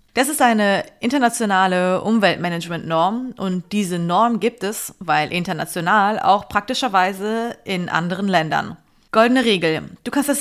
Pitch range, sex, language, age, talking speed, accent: 175-225 Hz, female, German, 20-39, 125 wpm, German